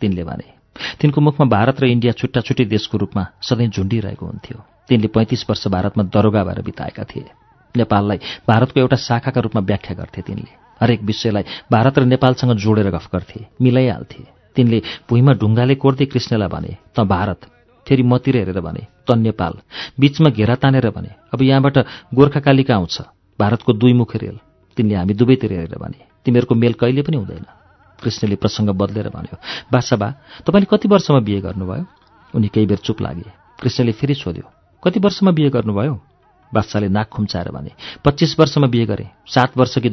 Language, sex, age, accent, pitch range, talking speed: English, male, 40-59, Indian, 105-135 Hz, 120 wpm